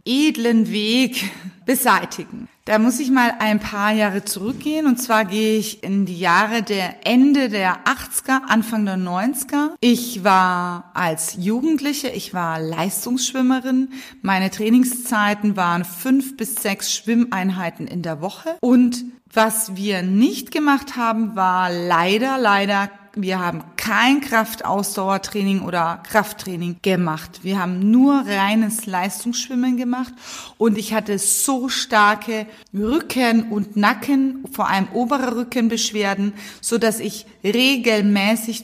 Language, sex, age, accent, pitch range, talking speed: German, female, 30-49, German, 195-245 Hz, 125 wpm